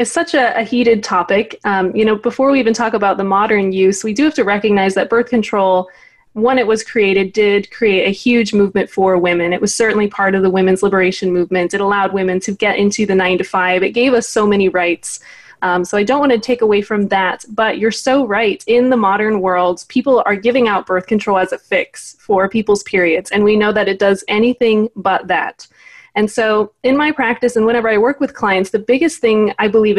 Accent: American